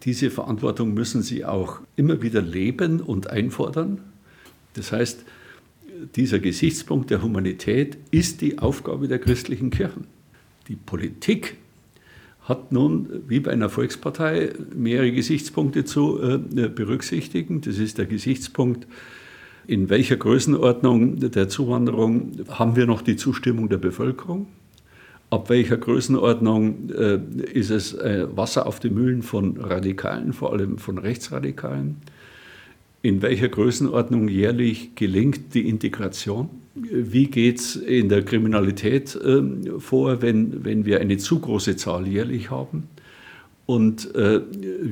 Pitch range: 100-125 Hz